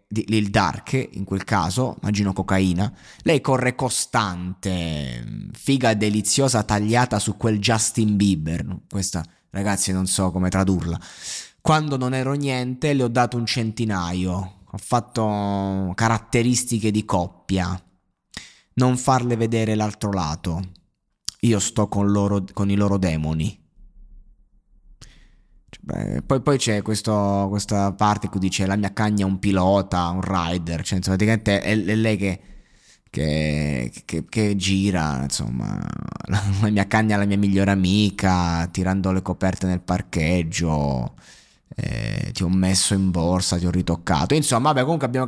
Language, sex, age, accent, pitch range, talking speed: Italian, male, 20-39, native, 95-120 Hz, 140 wpm